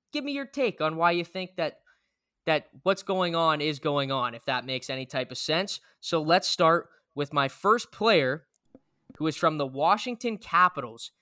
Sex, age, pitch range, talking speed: male, 10-29, 145-190 Hz, 195 wpm